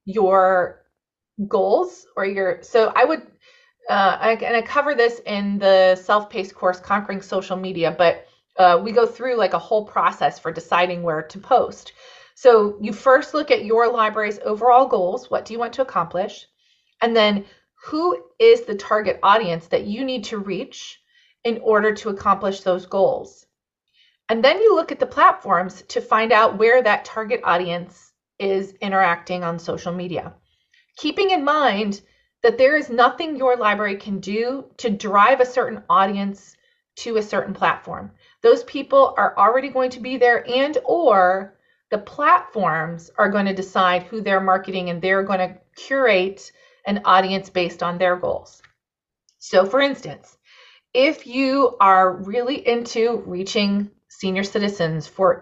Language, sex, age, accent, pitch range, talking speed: English, female, 30-49, American, 190-260 Hz, 160 wpm